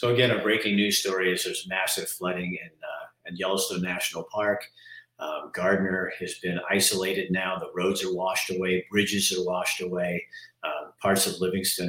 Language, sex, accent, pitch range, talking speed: English, male, American, 90-110 Hz, 175 wpm